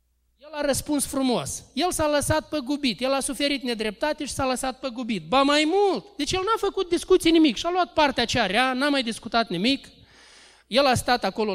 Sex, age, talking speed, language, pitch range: male, 20-39, 210 wpm, Romanian, 205-280 Hz